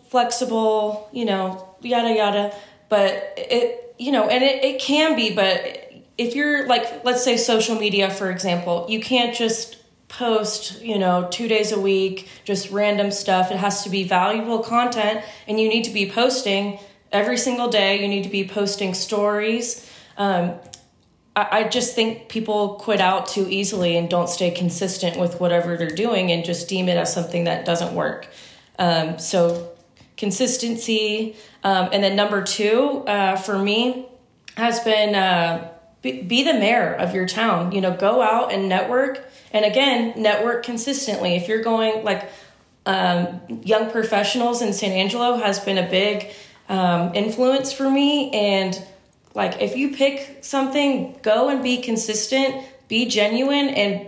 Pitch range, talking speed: 190-235 Hz, 165 wpm